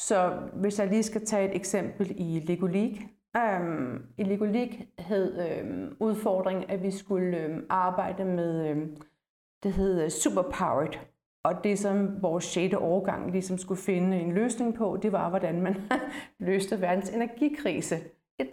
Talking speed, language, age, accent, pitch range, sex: 150 wpm, Danish, 30-49, native, 180-210 Hz, female